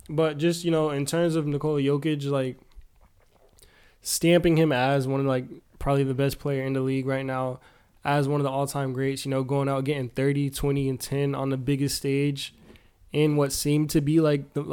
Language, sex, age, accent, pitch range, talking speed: English, male, 20-39, American, 135-150 Hz, 215 wpm